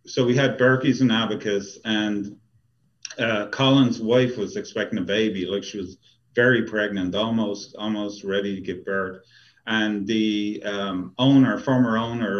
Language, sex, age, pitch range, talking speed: English, male, 40-59, 100-120 Hz, 150 wpm